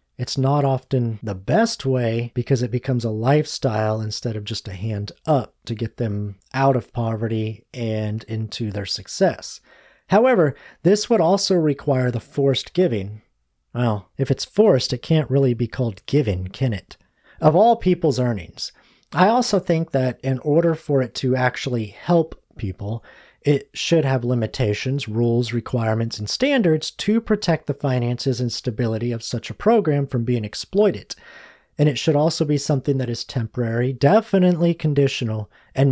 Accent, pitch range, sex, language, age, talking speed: American, 115-155 Hz, male, English, 40-59, 160 wpm